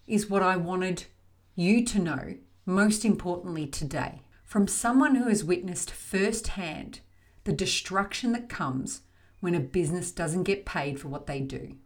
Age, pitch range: 40-59, 150-215 Hz